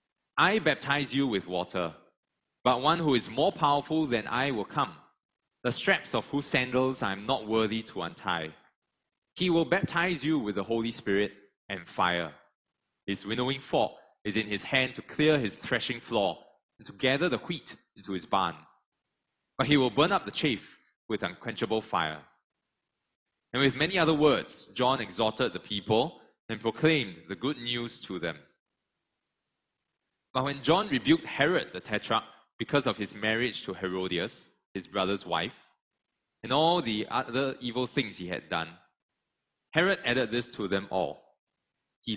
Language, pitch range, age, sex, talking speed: English, 105-140 Hz, 20-39, male, 160 wpm